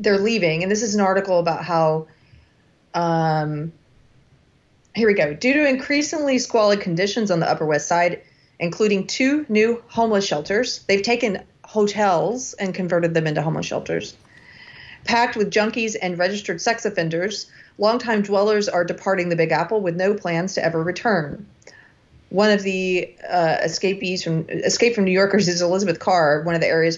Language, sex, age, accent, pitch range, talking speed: English, female, 30-49, American, 160-200 Hz, 165 wpm